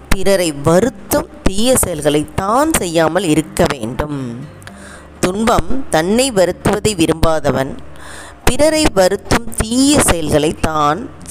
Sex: female